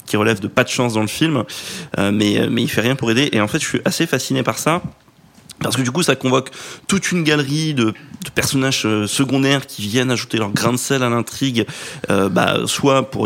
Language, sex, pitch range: French, male, 115-140 Hz